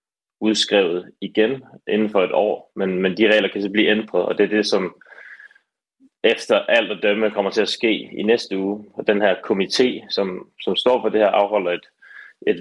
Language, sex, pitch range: Danish, male, 95-125 Hz